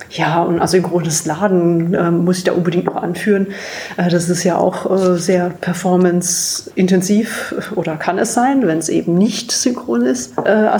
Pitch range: 180-200 Hz